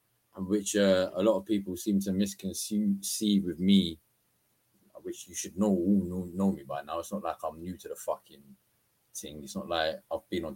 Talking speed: 210 wpm